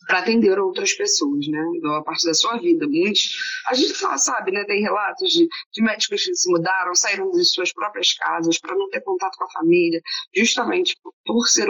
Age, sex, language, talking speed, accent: 20-39, female, Portuguese, 210 wpm, Brazilian